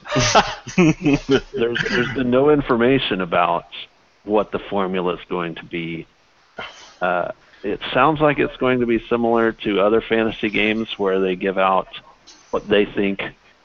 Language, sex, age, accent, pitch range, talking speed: English, male, 50-69, American, 90-115 Hz, 145 wpm